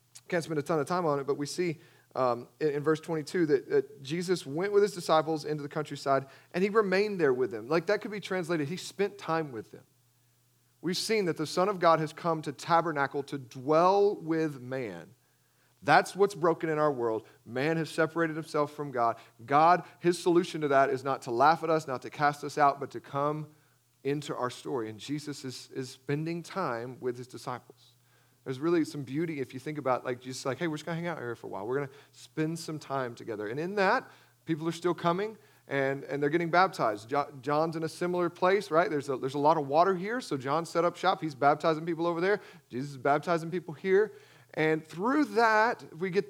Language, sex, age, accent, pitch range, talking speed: English, male, 40-59, American, 135-175 Hz, 230 wpm